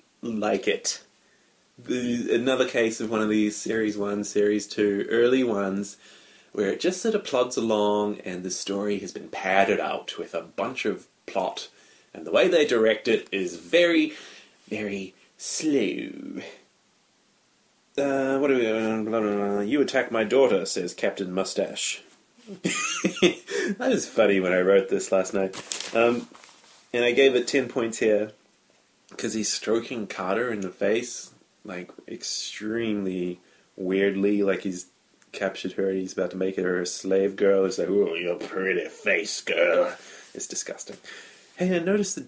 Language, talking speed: English, 150 wpm